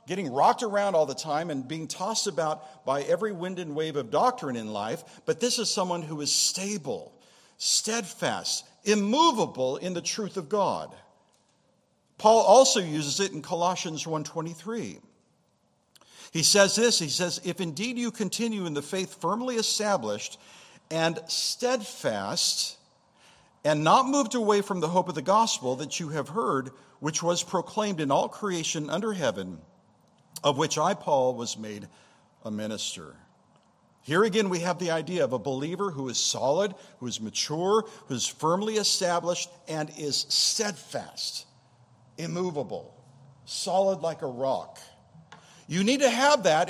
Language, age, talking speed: English, 50-69, 150 wpm